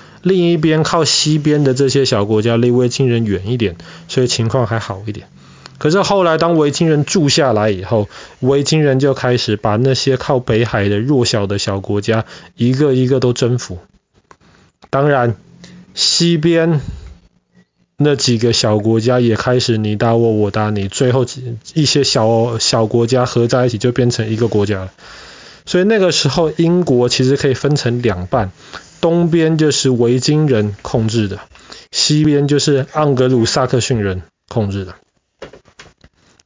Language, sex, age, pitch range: Chinese, male, 20-39, 110-145 Hz